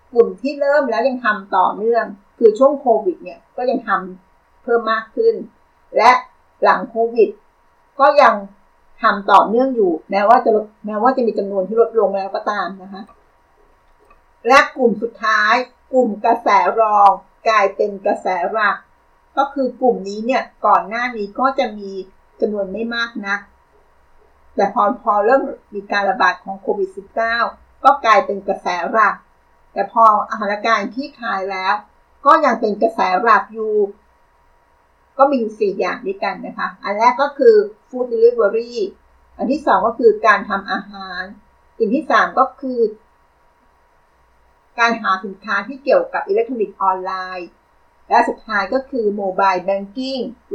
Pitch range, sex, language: 200-260 Hz, female, Thai